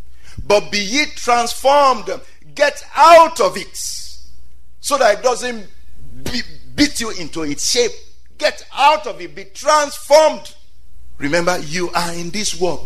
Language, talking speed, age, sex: English, 140 wpm, 50-69, male